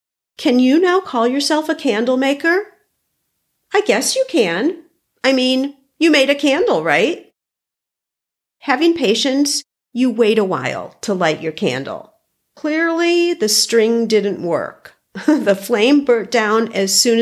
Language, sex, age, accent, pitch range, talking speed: English, female, 50-69, American, 205-305 Hz, 140 wpm